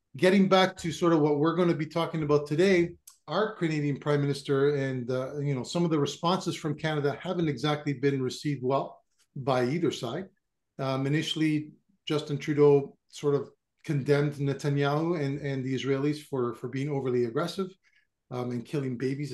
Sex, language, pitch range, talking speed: male, English, 140-170 Hz, 175 wpm